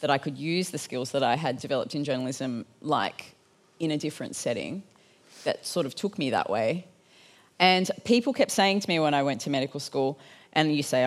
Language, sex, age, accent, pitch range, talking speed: English, female, 30-49, Australian, 140-185 Hz, 210 wpm